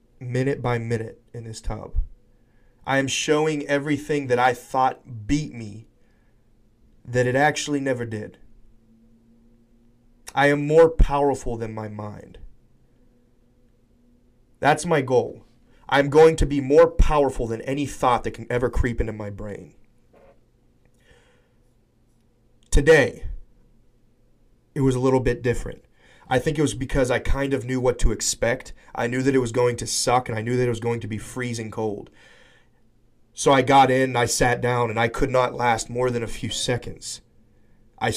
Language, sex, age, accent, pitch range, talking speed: English, male, 30-49, American, 115-130 Hz, 160 wpm